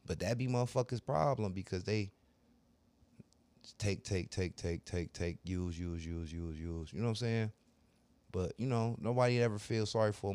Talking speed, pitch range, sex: 185 wpm, 90-125 Hz, male